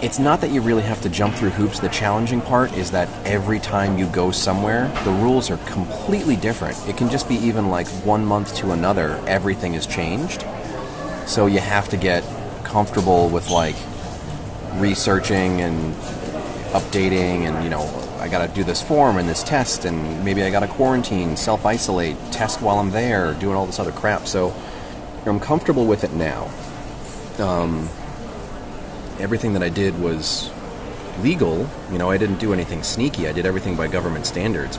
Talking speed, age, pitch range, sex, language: 170 wpm, 30-49, 85-105 Hz, male, English